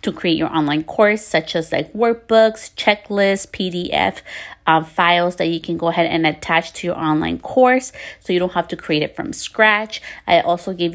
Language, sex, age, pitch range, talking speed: English, female, 30-49, 170-220 Hz, 195 wpm